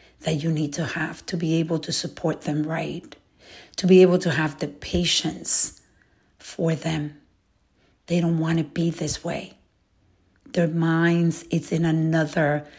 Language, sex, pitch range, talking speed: English, female, 155-180 Hz, 155 wpm